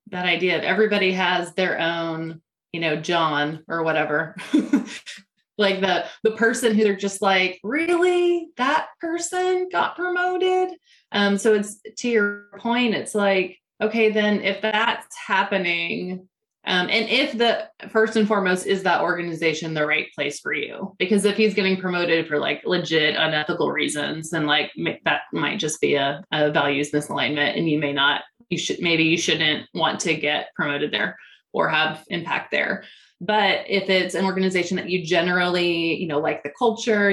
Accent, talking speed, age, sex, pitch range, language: American, 170 wpm, 20-39, female, 165-210 Hz, English